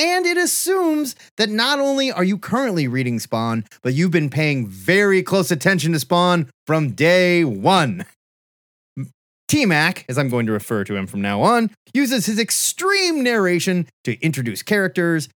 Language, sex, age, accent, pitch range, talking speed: English, male, 30-49, American, 145-245 Hz, 160 wpm